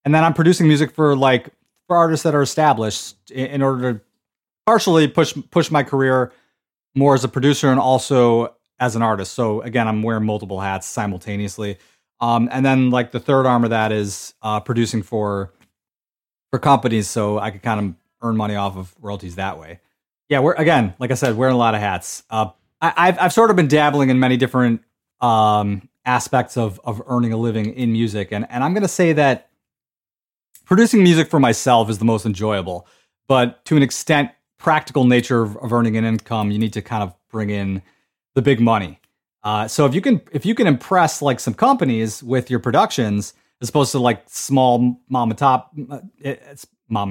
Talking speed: 195 wpm